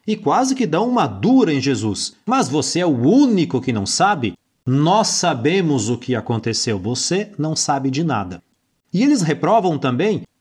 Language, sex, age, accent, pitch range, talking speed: Portuguese, male, 30-49, Brazilian, 130-205 Hz, 175 wpm